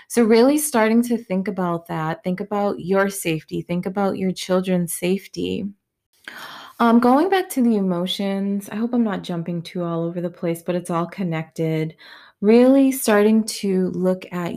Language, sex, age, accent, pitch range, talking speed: English, female, 20-39, American, 170-215 Hz, 170 wpm